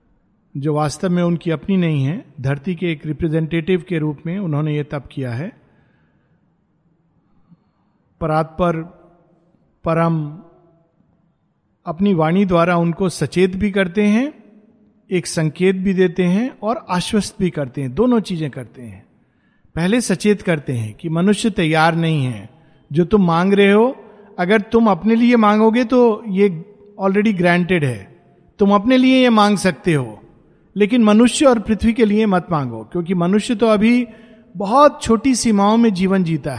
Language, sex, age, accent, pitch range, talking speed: Hindi, male, 50-69, native, 165-225 Hz, 150 wpm